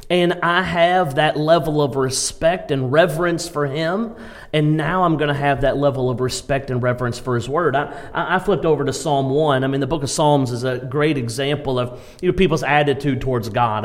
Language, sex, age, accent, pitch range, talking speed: English, male, 40-59, American, 135-170 Hz, 210 wpm